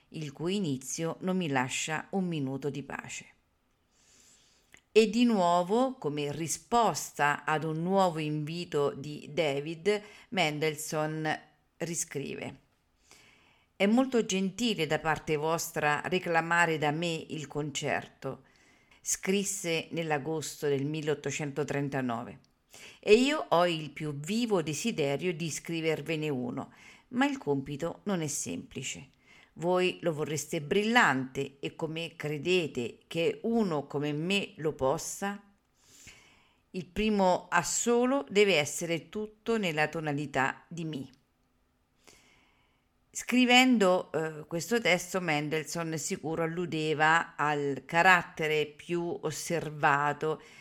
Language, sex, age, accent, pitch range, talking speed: Italian, female, 50-69, native, 150-185 Hz, 105 wpm